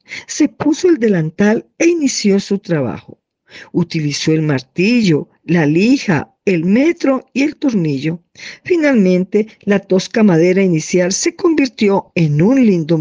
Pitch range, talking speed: 170-240 Hz, 130 wpm